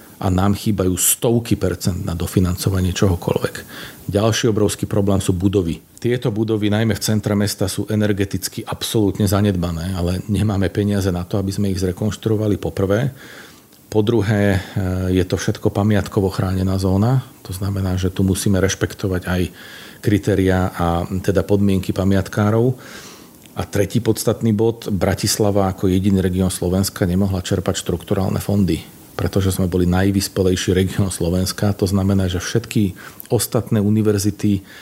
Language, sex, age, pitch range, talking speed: Slovak, male, 40-59, 95-105 Hz, 135 wpm